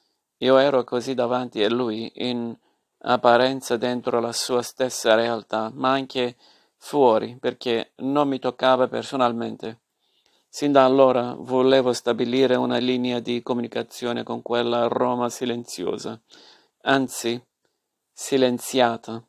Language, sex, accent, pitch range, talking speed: Italian, male, native, 120-135 Hz, 110 wpm